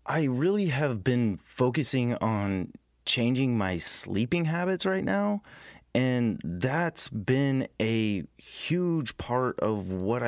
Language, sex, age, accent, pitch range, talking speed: English, male, 30-49, American, 100-130 Hz, 115 wpm